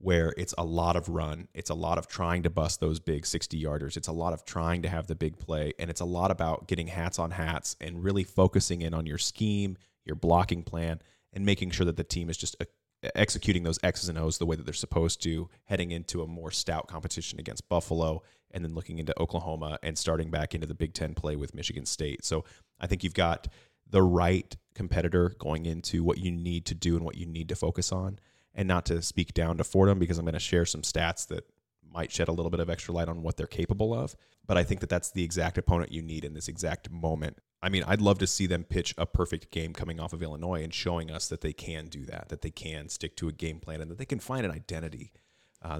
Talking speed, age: 250 wpm, 30-49